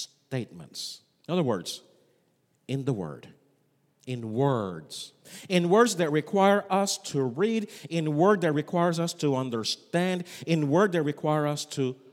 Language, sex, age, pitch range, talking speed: English, male, 50-69, 140-180 Hz, 145 wpm